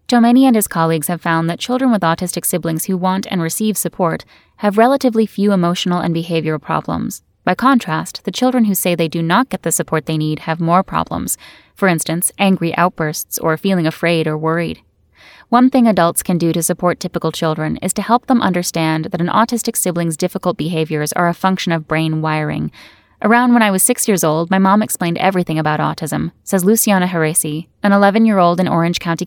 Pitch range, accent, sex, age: 160-210 Hz, American, female, 10-29